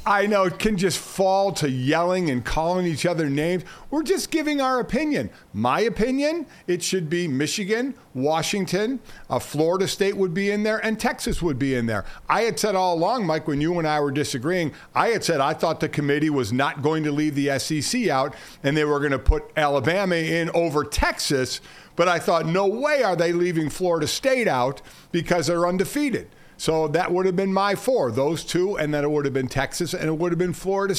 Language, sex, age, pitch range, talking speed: English, male, 50-69, 155-195 Hz, 215 wpm